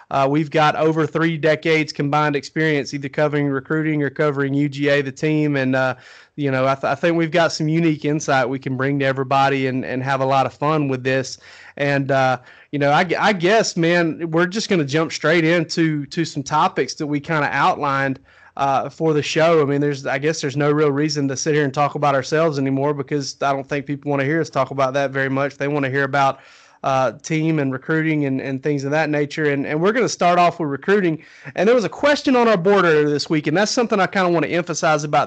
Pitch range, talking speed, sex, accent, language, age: 140-170 Hz, 245 wpm, male, American, English, 30-49